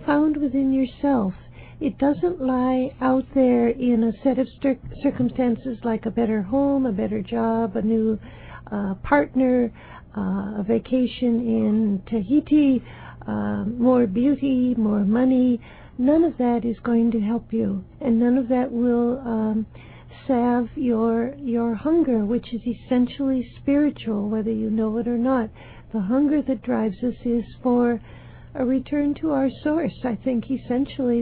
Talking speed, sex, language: 150 wpm, female, English